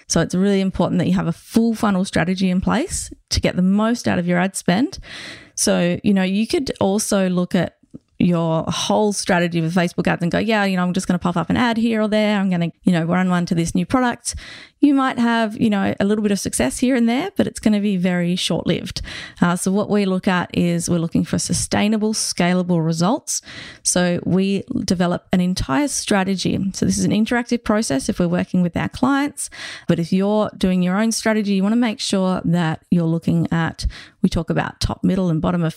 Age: 30-49